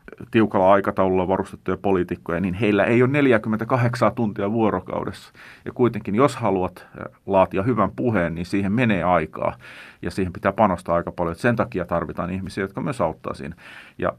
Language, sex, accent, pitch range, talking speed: Finnish, male, native, 95-120 Hz, 155 wpm